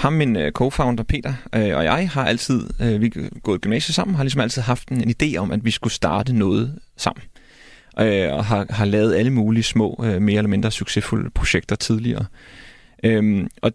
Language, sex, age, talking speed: Danish, male, 30-49, 170 wpm